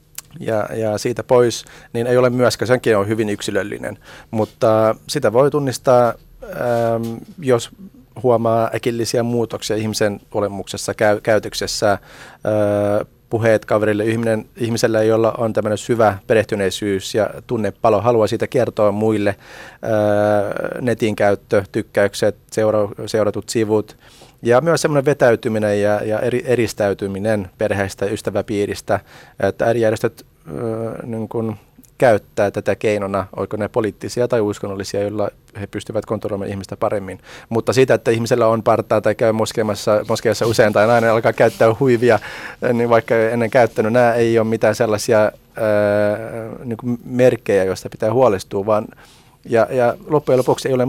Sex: male